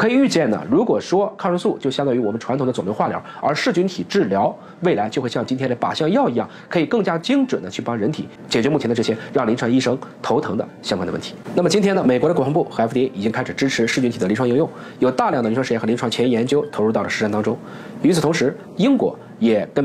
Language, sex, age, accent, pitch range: Chinese, male, 20-39, native, 115-155 Hz